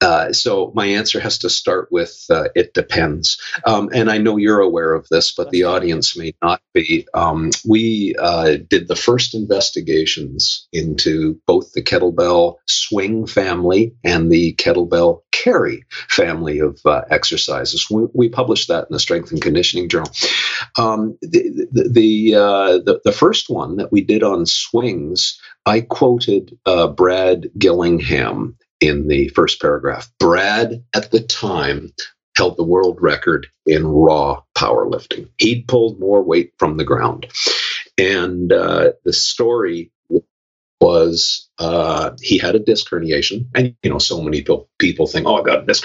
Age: 50-69